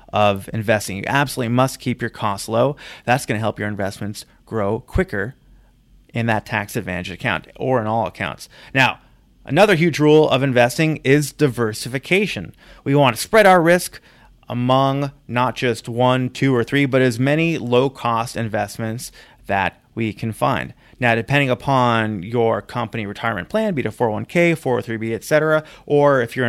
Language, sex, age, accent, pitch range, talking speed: English, male, 30-49, American, 115-135 Hz, 165 wpm